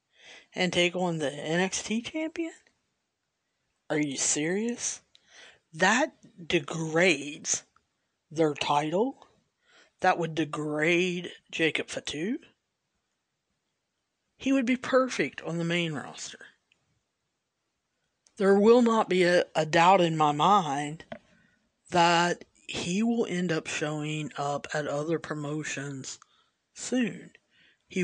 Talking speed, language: 105 wpm, English